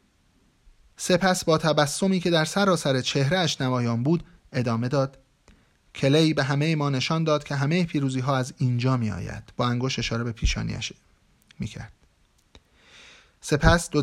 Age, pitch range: 30-49, 125-160 Hz